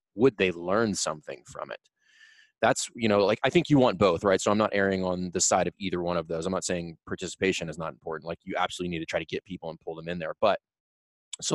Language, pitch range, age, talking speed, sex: English, 90-105 Hz, 20-39, 265 wpm, male